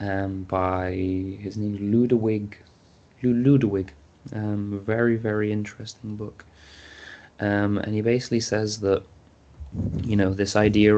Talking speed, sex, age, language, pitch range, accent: 120 wpm, male, 20-39, English, 95-105 Hz, British